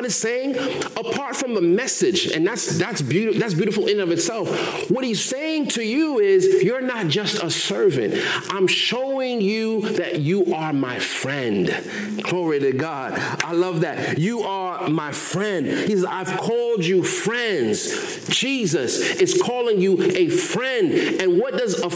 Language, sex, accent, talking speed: English, male, American, 165 wpm